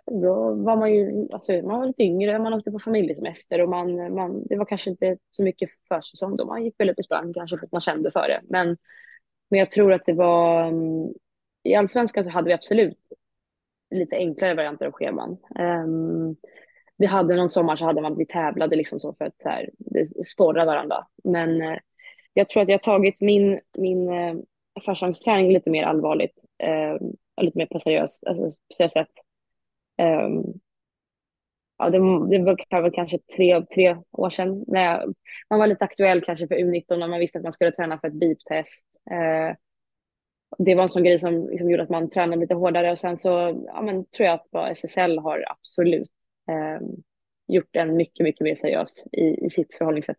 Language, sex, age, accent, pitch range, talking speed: Swedish, female, 20-39, native, 165-190 Hz, 195 wpm